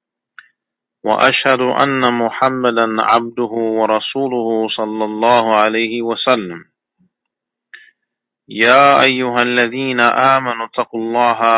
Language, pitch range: English, 115-125 Hz